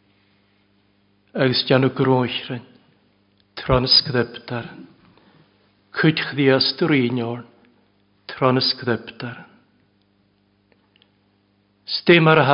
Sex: male